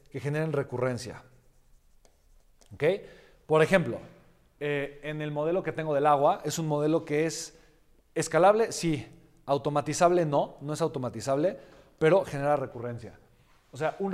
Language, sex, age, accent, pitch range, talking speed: Spanish, male, 40-59, Mexican, 130-165 Hz, 130 wpm